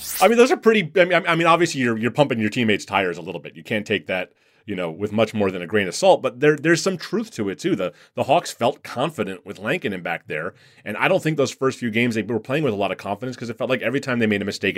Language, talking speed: English, 310 wpm